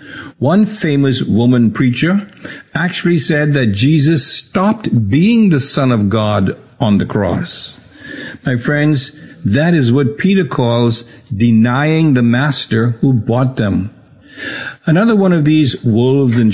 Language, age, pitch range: English, 60-79, 120-160 Hz